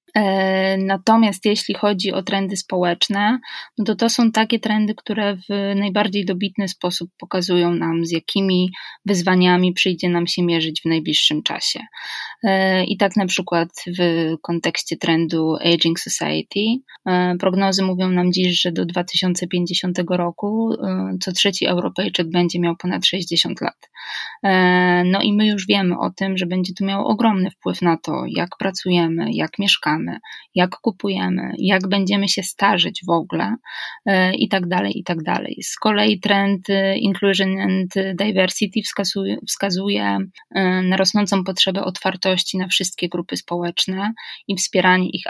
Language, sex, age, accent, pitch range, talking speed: Polish, female, 20-39, native, 180-205 Hz, 140 wpm